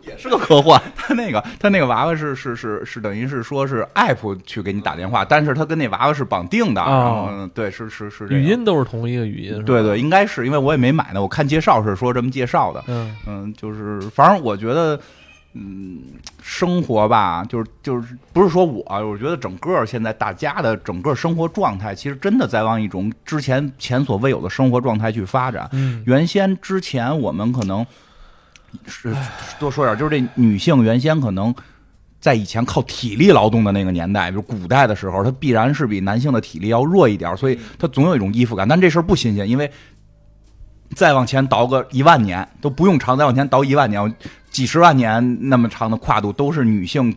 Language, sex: Chinese, male